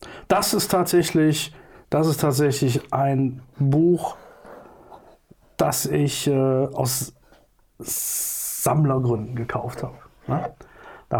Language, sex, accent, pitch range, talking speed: German, male, German, 130-155 Hz, 90 wpm